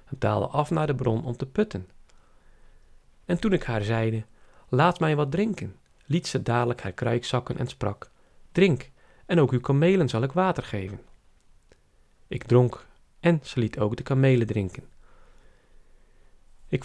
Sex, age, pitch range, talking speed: male, 40-59, 105-140 Hz, 160 wpm